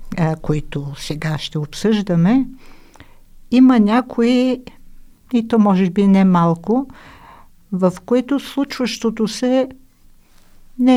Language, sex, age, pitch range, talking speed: Bulgarian, female, 60-79, 165-225 Hz, 95 wpm